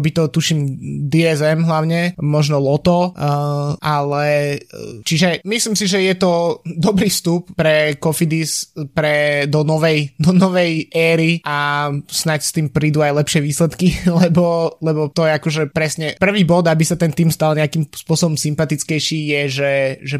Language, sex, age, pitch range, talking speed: Slovak, male, 20-39, 150-175 Hz, 150 wpm